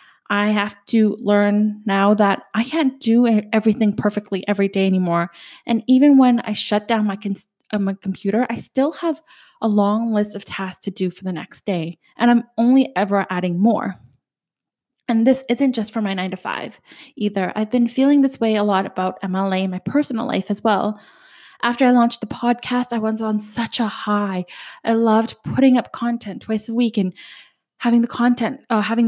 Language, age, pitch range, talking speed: English, 10-29, 200-240 Hz, 195 wpm